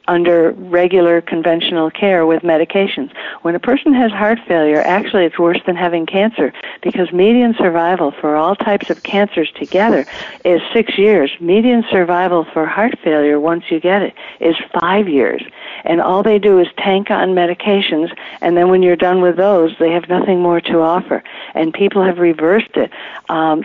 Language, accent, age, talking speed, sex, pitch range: English, American, 60-79, 175 wpm, female, 170-210 Hz